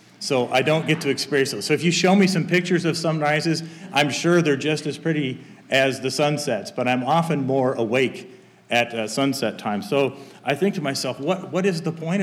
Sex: male